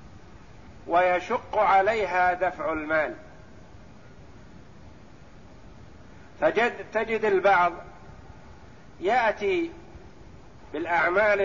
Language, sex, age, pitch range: Arabic, male, 50-69, 170-205 Hz